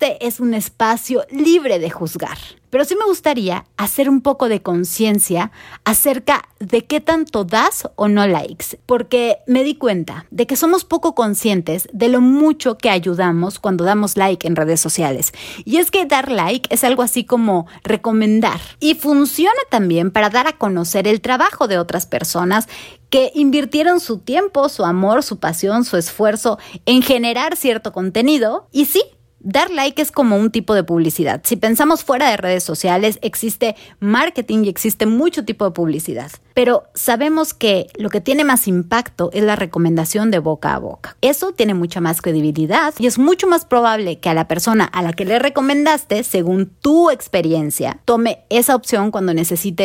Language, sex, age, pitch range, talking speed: Spanish, female, 30-49, 180-265 Hz, 175 wpm